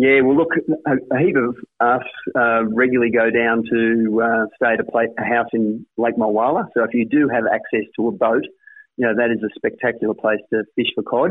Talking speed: 220 wpm